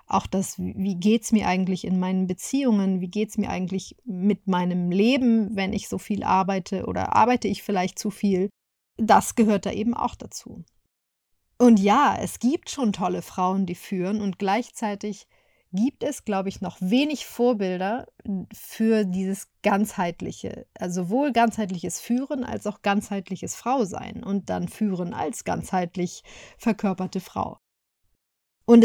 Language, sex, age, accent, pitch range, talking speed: German, female, 40-59, German, 190-225 Hz, 150 wpm